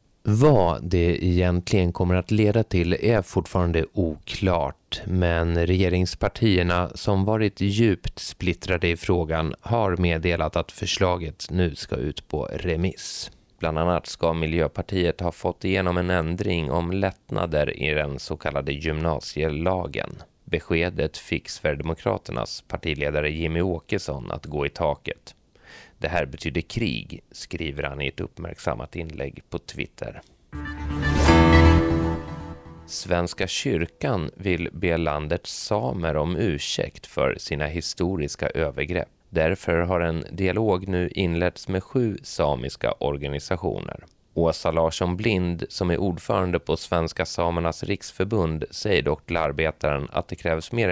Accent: native